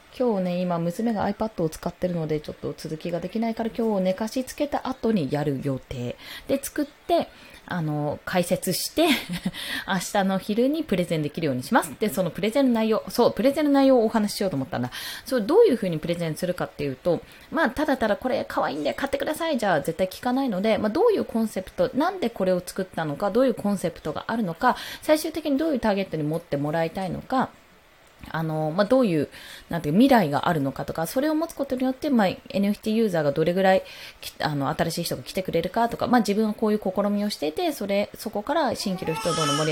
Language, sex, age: Japanese, female, 20-39